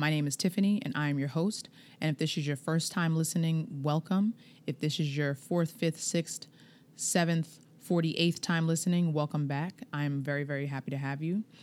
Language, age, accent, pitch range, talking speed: English, 20-39, American, 145-170 Hz, 200 wpm